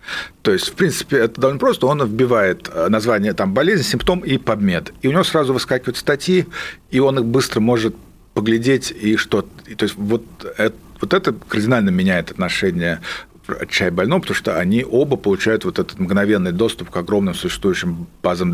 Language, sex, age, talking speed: Russian, male, 50-69, 175 wpm